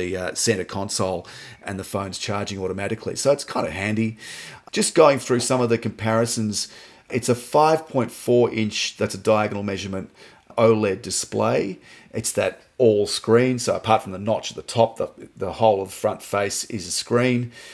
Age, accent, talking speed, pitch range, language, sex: 40-59, Australian, 175 wpm, 100-115 Hz, English, male